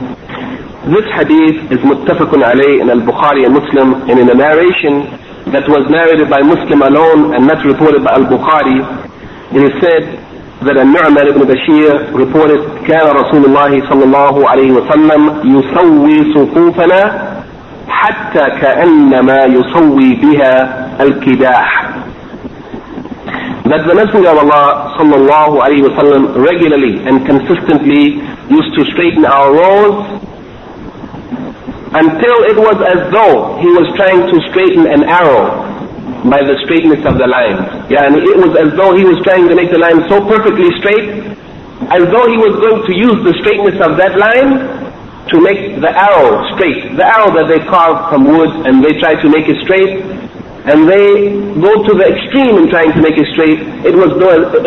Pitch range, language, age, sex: 145-200 Hz, English, 50-69, male